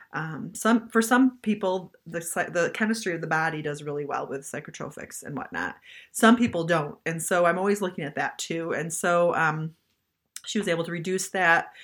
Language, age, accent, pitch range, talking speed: English, 30-49, American, 155-205 Hz, 195 wpm